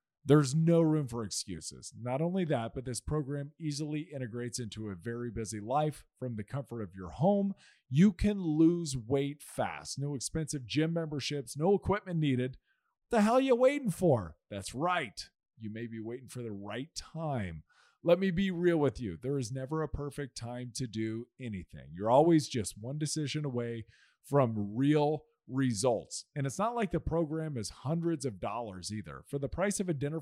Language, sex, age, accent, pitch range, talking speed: English, male, 40-59, American, 125-170 Hz, 185 wpm